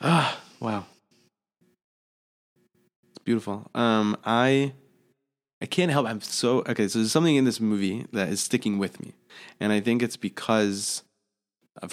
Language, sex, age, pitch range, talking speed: English, male, 20-39, 95-115 Hz, 145 wpm